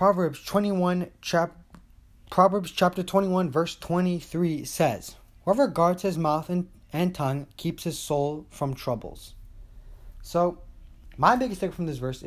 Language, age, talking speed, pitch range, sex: English, 20-39, 135 wpm, 120-175 Hz, male